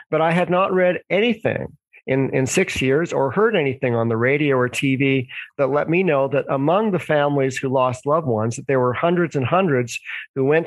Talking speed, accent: 215 wpm, American